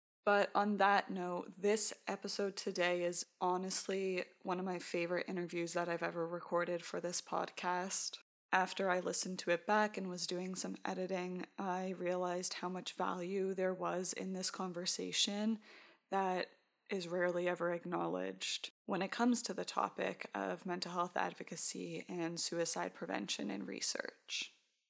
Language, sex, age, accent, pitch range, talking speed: English, female, 20-39, American, 170-190 Hz, 150 wpm